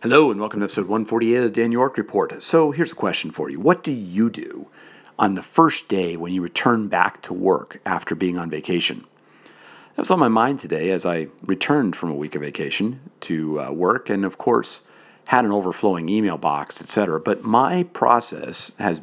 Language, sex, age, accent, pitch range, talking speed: English, male, 50-69, American, 85-115 Hz, 205 wpm